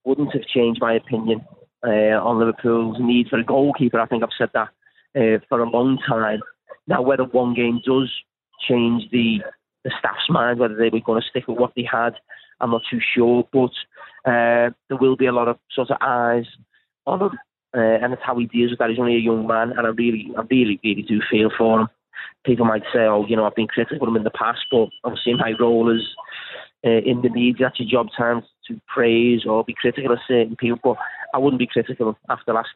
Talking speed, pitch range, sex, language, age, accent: 230 wpm, 115-125 Hz, male, English, 30-49, British